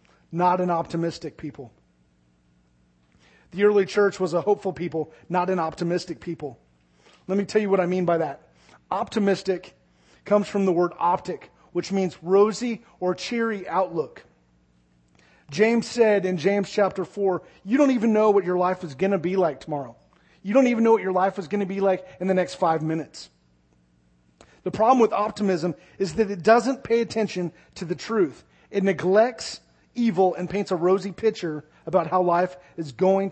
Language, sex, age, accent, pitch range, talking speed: English, male, 30-49, American, 155-190 Hz, 175 wpm